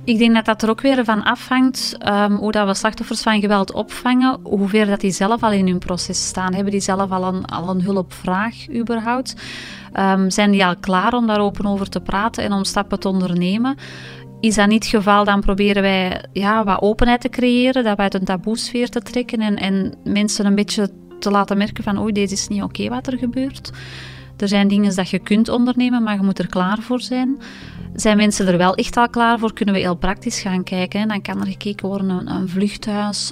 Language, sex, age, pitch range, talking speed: Dutch, female, 30-49, 195-225 Hz, 215 wpm